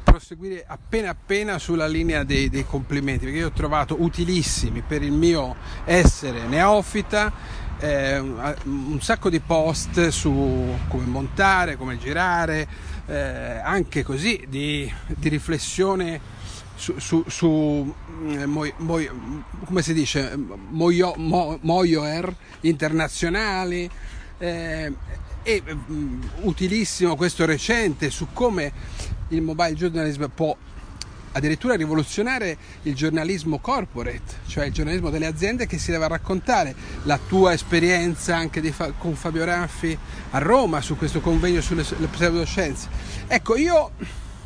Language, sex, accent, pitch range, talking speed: Italian, male, native, 150-195 Hz, 115 wpm